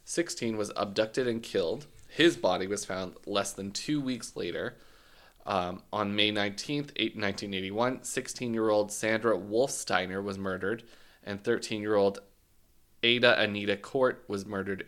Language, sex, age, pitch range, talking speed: English, male, 20-39, 95-115 Hz, 125 wpm